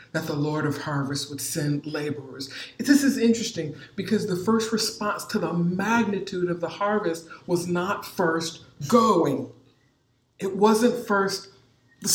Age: 50-69